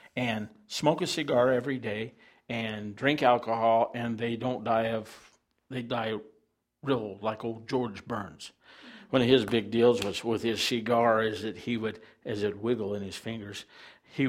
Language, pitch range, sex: English, 110-135 Hz, male